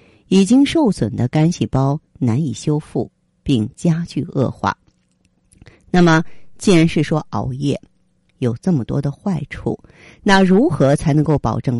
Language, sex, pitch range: Chinese, female, 120-160 Hz